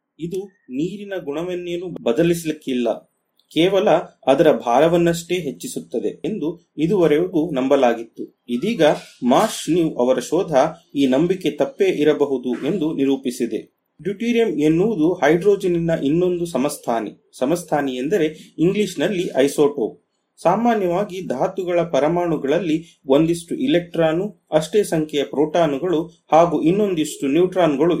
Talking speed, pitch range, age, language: 85 wpm, 145-185 Hz, 30-49, Kannada